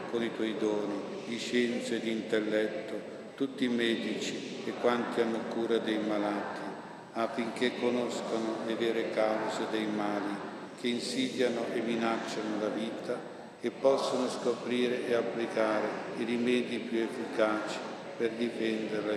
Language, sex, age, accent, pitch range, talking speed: Italian, male, 50-69, native, 110-120 Hz, 130 wpm